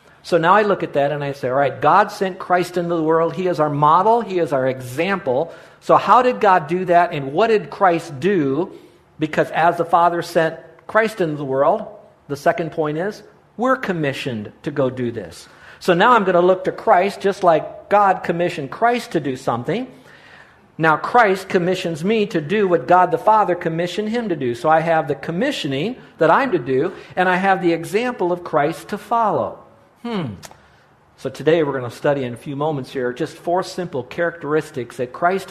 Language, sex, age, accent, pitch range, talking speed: English, male, 50-69, American, 145-195 Hz, 205 wpm